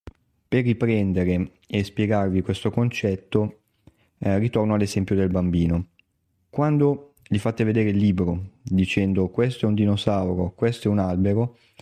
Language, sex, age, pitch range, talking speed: Italian, male, 30-49, 95-120 Hz, 130 wpm